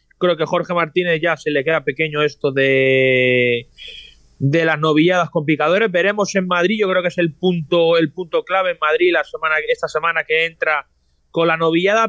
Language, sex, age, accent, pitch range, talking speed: Spanish, male, 30-49, Spanish, 155-190 Hz, 190 wpm